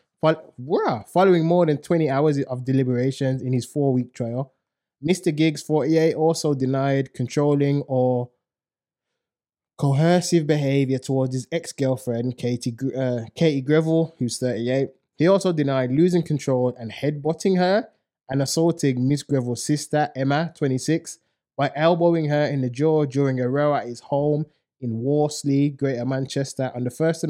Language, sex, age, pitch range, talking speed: English, male, 20-39, 130-160 Hz, 140 wpm